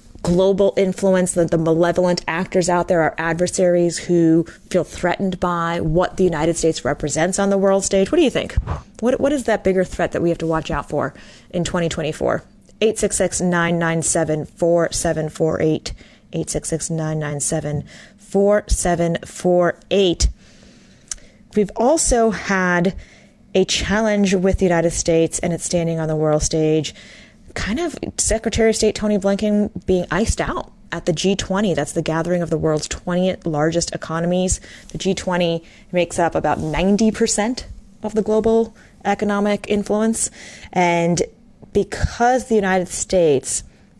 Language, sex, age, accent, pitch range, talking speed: English, female, 30-49, American, 165-200 Hz, 130 wpm